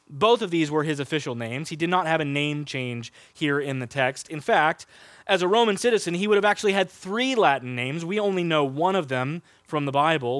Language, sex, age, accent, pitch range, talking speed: English, male, 20-39, American, 135-190 Hz, 235 wpm